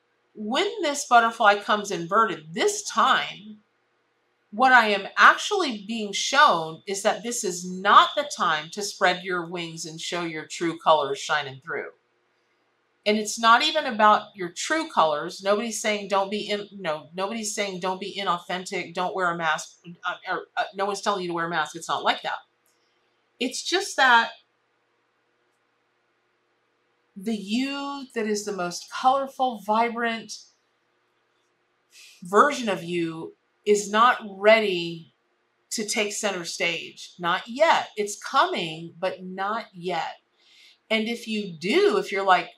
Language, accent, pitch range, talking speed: English, American, 180-230 Hz, 145 wpm